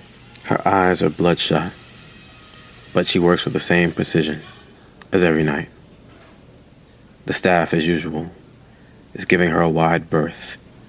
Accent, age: American, 30-49